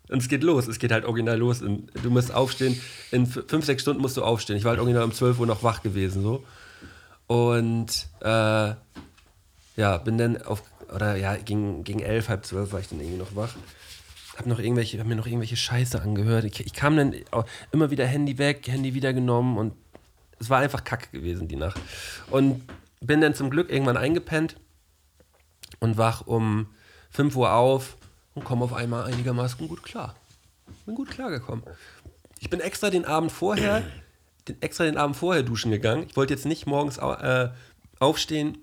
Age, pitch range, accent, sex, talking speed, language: 40-59, 105-130 Hz, German, male, 185 wpm, German